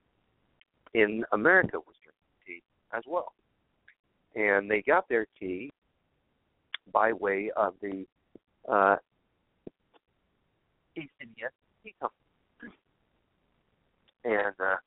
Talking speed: 85 wpm